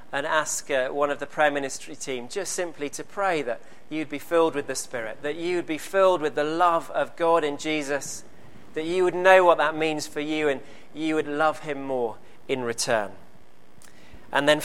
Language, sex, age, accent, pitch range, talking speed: English, male, 40-59, British, 145-175 Hz, 200 wpm